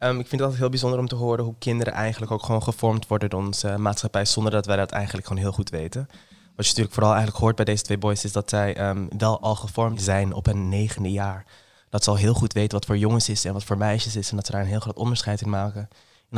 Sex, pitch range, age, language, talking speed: male, 105-120 Hz, 20-39, Dutch, 285 wpm